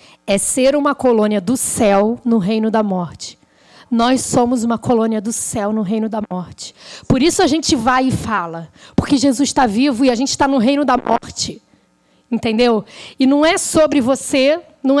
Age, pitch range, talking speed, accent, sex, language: 20-39, 205-265 Hz, 185 wpm, Brazilian, female, Portuguese